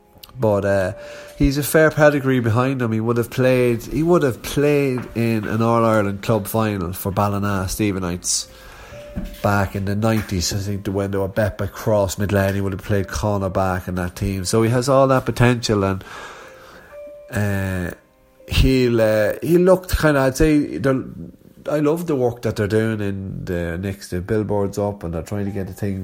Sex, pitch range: male, 100-125 Hz